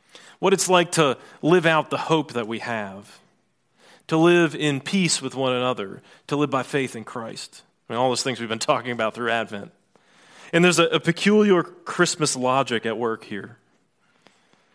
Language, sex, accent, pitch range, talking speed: English, male, American, 125-170 Hz, 180 wpm